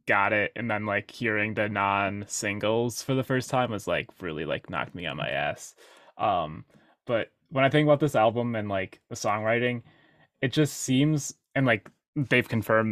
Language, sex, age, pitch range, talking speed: English, male, 20-39, 100-120 Hz, 185 wpm